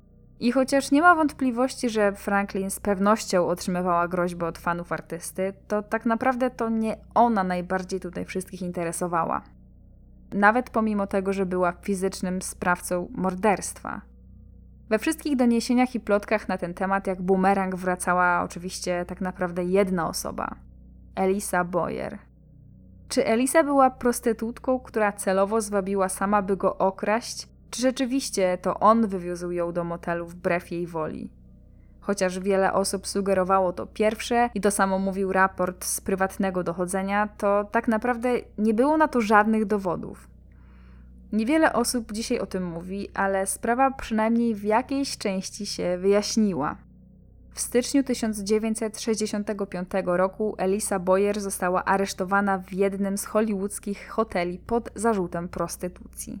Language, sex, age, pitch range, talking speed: Polish, female, 10-29, 185-225 Hz, 135 wpm